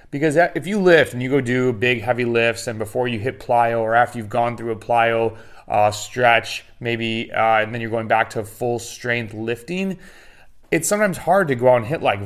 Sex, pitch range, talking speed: male, 105-125 Hz, 220 wpm